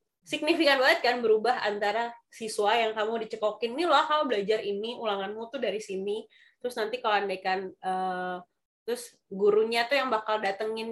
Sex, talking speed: female, 160 wpm